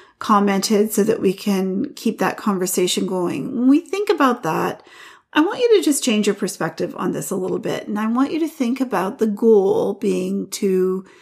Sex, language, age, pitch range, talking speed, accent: female, English, 40-59, 200-260 Hz, 205 wpm, American